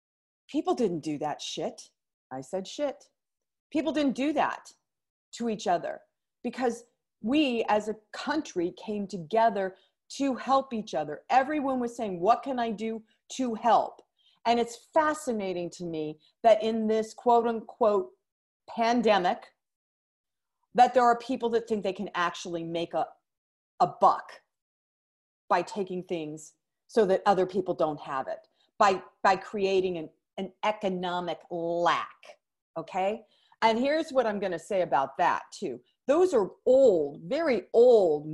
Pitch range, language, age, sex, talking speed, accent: 190-255 Hz, English, 40-59, female, 140 wpm, American